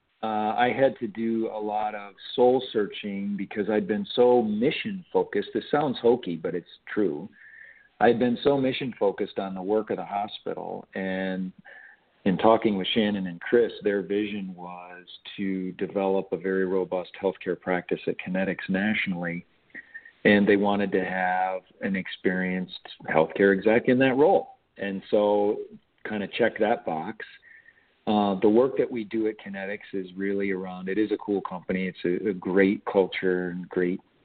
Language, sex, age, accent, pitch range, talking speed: English, male, 50-69, American, 95-115 Hz, 165 wpm